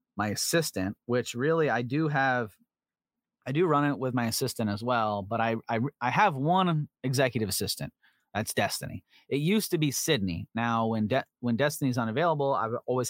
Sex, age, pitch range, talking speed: male, 30-49, 110-145 Hz, 185 wpm